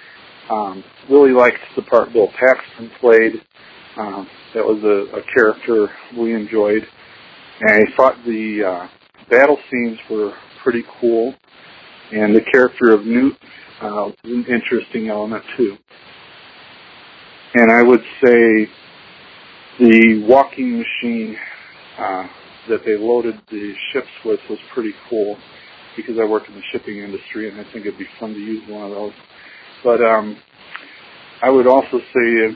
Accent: American